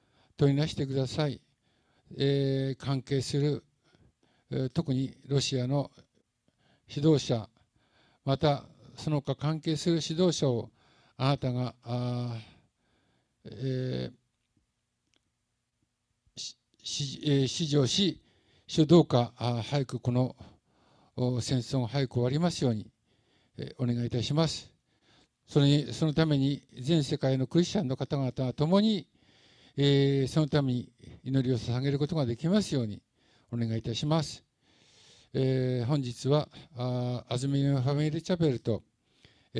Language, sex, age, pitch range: Japanese, male, 60-79, 120-145 Hz